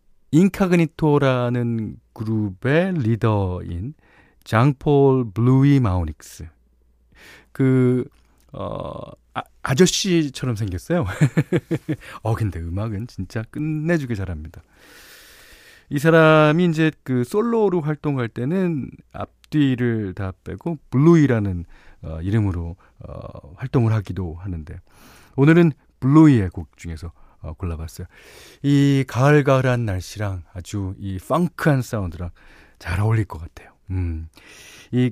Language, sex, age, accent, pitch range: Korean, male, 40-59, native, 95-140 Hz